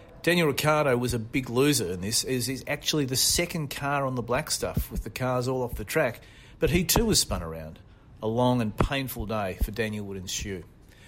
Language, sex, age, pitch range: English, male, 40-59, 110-140 Hz